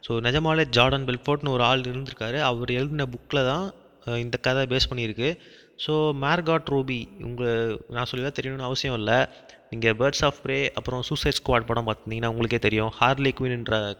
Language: Tamil